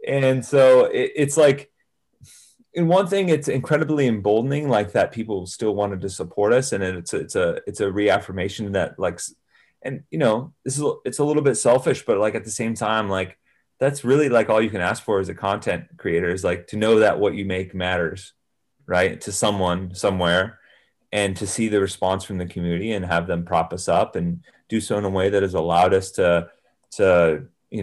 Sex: male